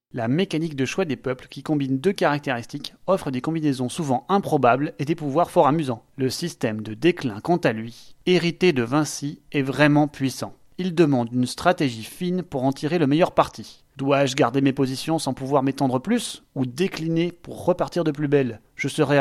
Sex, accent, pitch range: male, French, 135-170 Hz